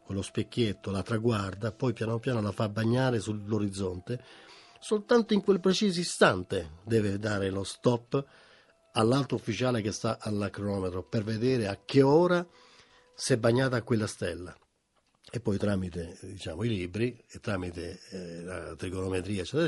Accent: native